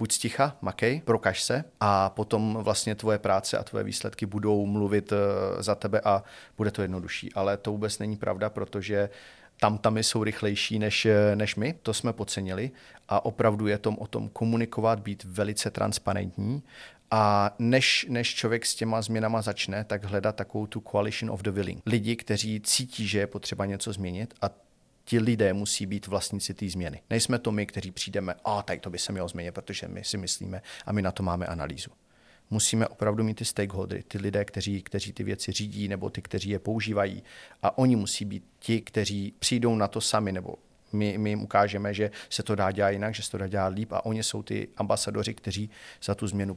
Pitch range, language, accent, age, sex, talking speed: 100-110 Hz, Czech, native, 40-59, male, 195 wpm